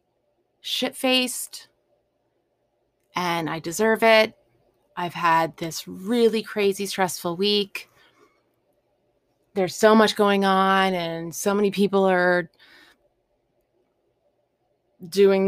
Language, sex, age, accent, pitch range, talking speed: English, female, 20-39, American, 180-205 Hz, 90 wpm